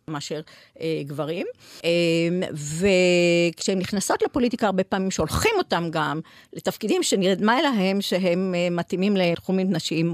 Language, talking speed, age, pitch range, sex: Hebrew, 120 wpm, 50-69, 170-235 Hz, female